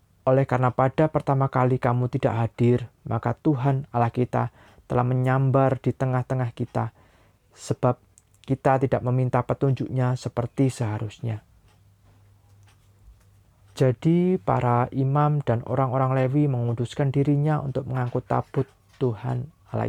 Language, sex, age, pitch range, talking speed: Indonesian, male, 20-39, 105-135 Hz, 110 wpm